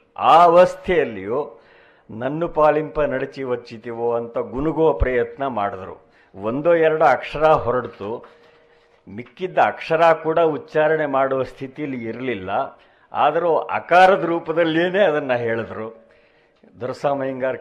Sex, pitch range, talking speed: male, 120-155 Hz, 90 wpm